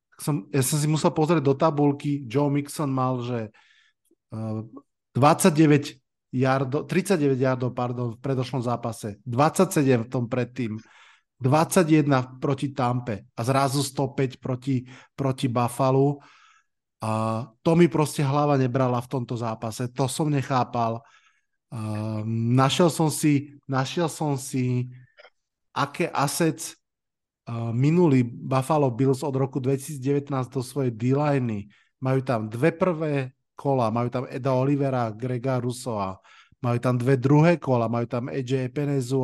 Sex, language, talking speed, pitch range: male, Slovak, 125 wpm, 125-145 Hz